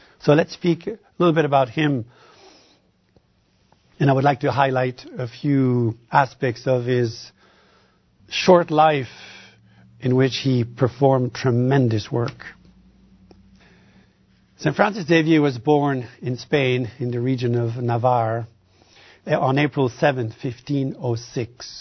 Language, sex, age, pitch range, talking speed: English, male, 60-79, 120-140 Hz, 120 wpm